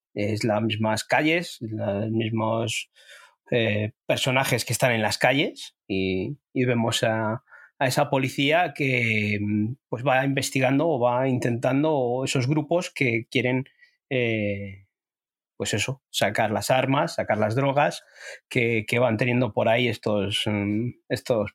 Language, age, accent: Spanish, 30-49, Spanish